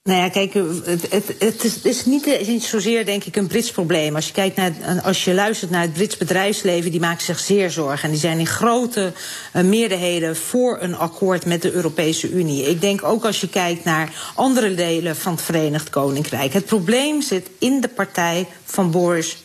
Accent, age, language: Dutch, 40-59, Dutch